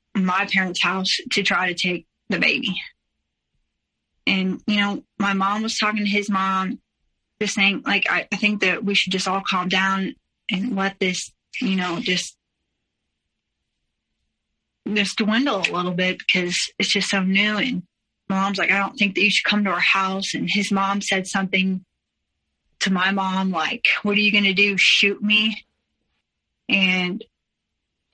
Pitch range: 185-205 Hz